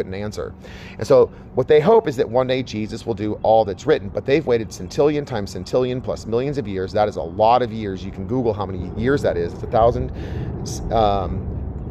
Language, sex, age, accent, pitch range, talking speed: English, male, 30-49, American, 95-125 Hz, 240 wpm